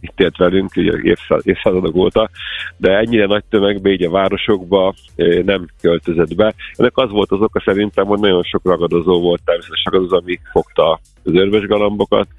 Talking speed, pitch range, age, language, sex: 160 wpm, 85-105 Hz, 40-59, Hungarian, male